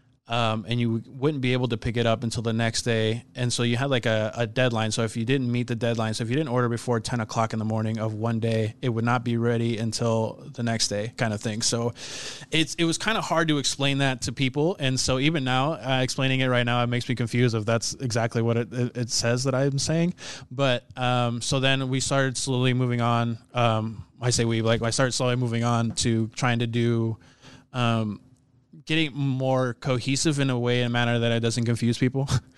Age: 20-39